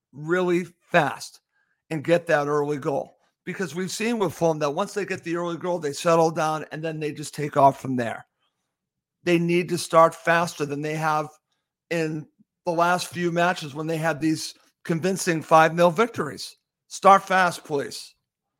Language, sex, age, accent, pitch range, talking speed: English, male, 50-69, American, 155-180 Hz, 175 wpm